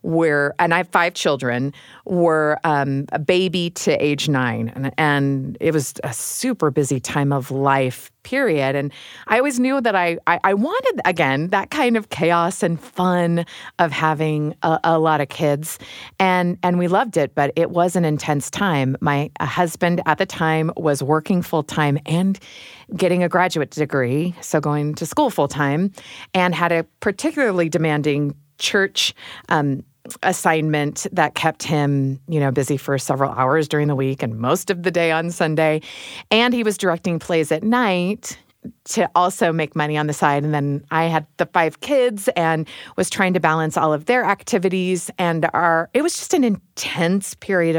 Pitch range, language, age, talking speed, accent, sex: 150-200 Hz, English, 40-59, 175 wpm, American, female